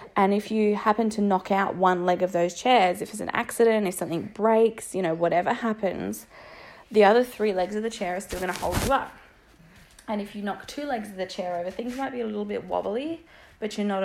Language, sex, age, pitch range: English, female, 20-39, 190-230 Hz